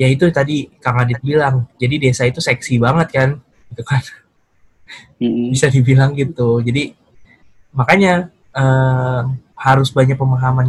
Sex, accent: male, native